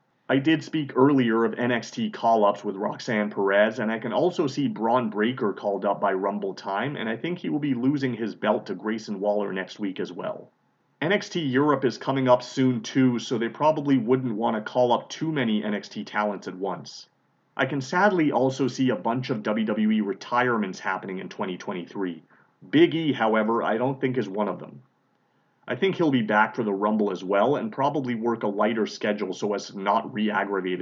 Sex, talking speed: male, 200 wpm